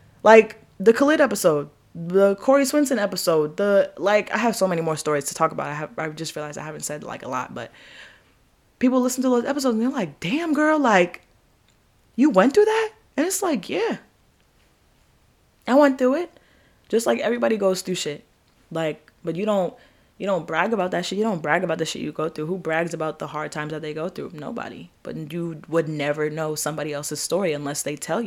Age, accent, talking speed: 20-39, American, 215 wpm